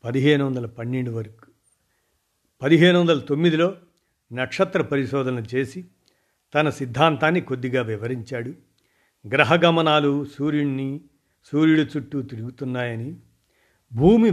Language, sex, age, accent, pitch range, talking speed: Telugu, male, 50-69, native, 120-155 Hz, 90 wpm